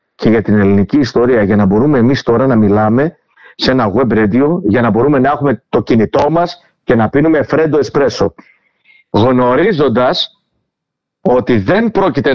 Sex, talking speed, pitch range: male, 160 wpm, 120-175 Hz